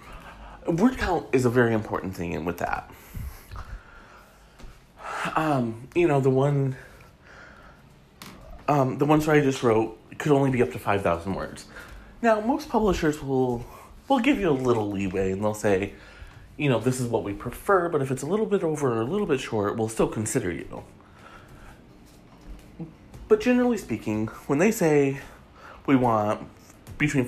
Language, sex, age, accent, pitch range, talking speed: English, male, 30-49, American, 105-145 Hz, 165 wpm